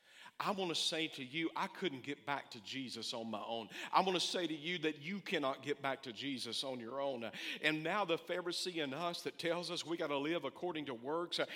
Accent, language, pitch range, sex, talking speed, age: American, English, 170-275 Hz, male, 245 wpm, 50-69